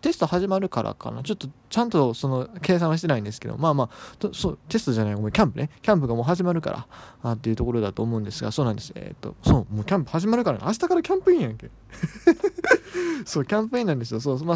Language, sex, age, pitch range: Japanese, male, 20-39, 115-155 Hz